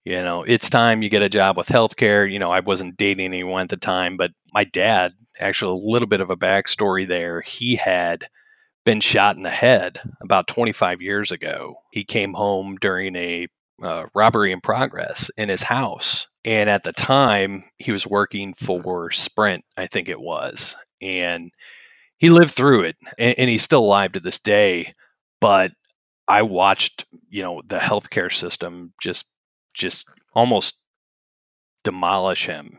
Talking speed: 170 wpm